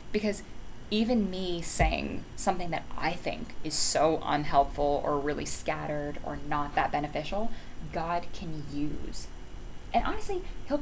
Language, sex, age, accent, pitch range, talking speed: English, female, 20-39, American, 140-205 Hz, 135 wpm